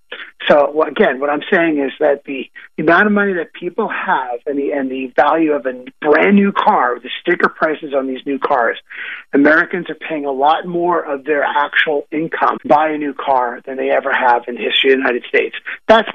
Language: English